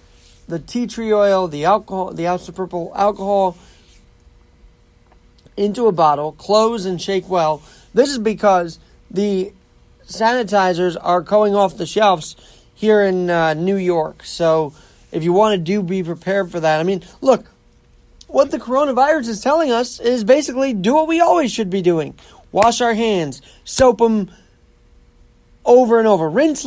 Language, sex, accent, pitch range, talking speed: English, male, American, 180-230 Hz, 155 wpm